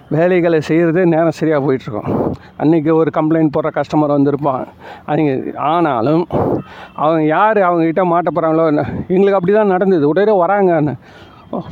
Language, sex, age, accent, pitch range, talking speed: Tamil, male, 50-69, native, 150-180 Hz, 130 wpm